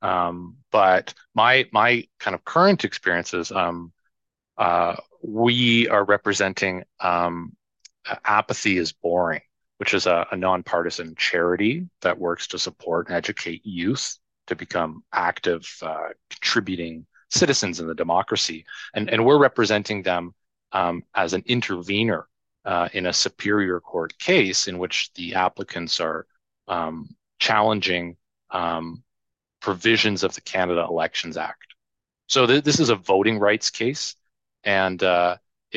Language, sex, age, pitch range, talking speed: English, male, 30-49, 85-105 Hz, 135 wpm